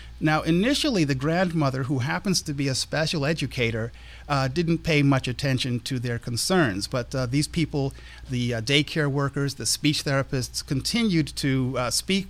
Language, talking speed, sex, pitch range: English, 165 wpm, male, 130-160 Hz